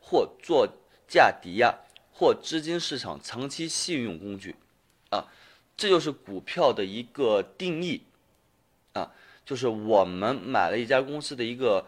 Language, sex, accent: Chinese, male, native